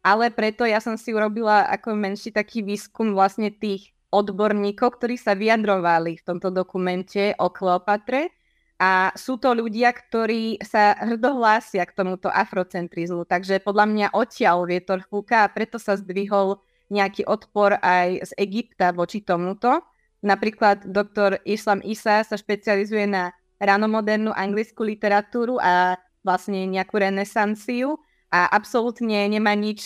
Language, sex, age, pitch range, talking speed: Slovak, female, 20-39, 195-220 Hz, 130 wpm